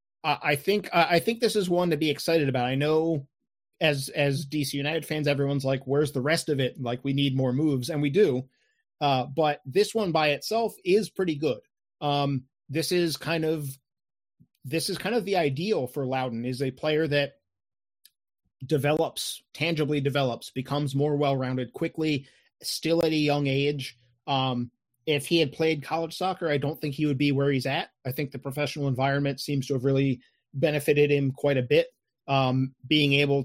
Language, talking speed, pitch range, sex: English, 185 wpm, 135-160 Hz, male